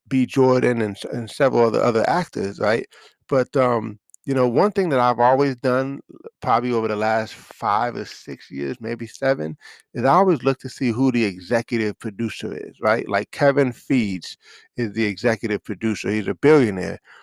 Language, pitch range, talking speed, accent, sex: English, 110-135 Hz, 180 wpm, American, male